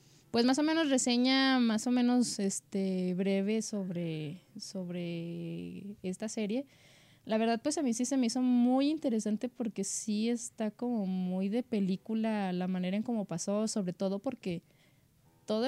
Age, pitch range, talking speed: 20-39, 195-250 Hz, 155 wpm